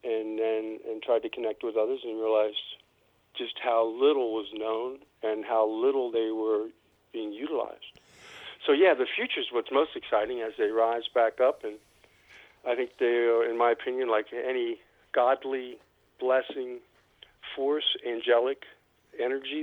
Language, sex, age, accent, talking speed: English, male, 50-69, American, 150 wpm